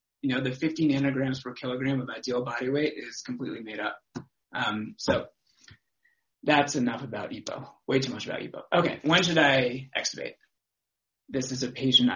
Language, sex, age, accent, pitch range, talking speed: English, male, 30-49, American, 120-145 Hz, 175 wpm